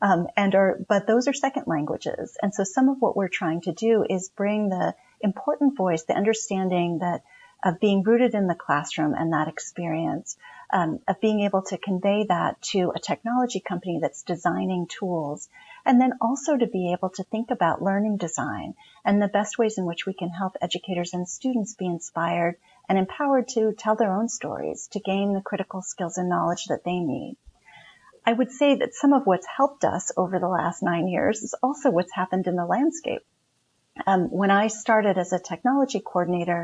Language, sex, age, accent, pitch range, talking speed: English, female, 40-59, American, 180-230 Hz, 195 wpm